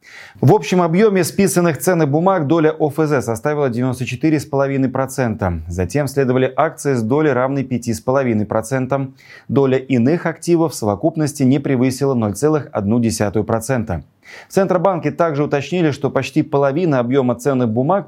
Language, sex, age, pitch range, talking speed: Russian, male, 20-39, 115-150 Hz, 115 wpm